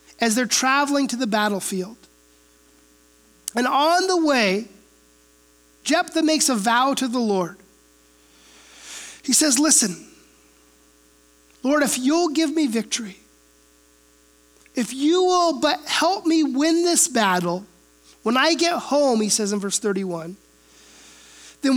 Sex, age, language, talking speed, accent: male, 30-49, English, 125 wpm, American